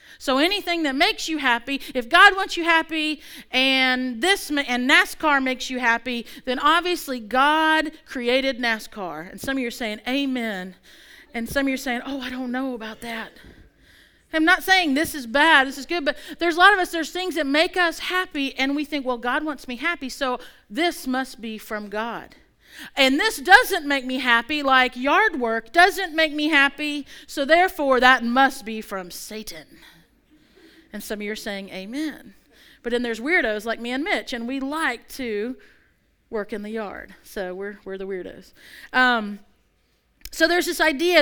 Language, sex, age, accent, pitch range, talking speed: English, female, 40-59, American, 240-320 Hz, 190 wpm